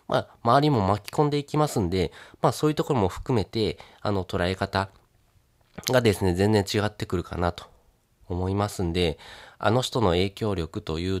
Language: Japanese